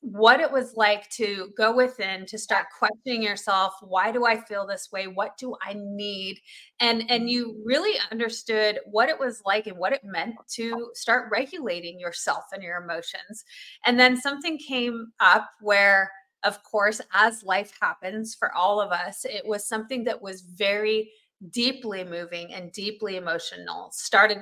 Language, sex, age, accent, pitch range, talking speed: English, female, 30-49, American, 195-240 Hz, 165 wpm